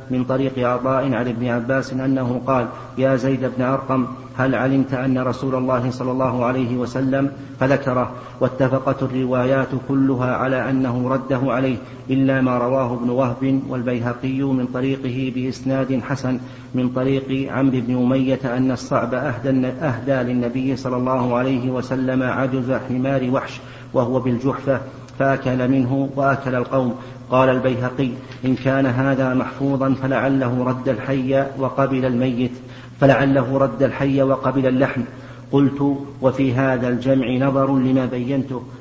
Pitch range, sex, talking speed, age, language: 125-135 Hz, male, 130 wpm, 50-69, Arabic